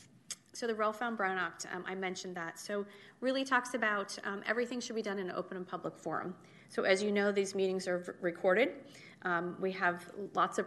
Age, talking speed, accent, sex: 30-49, 215 wpm, American, female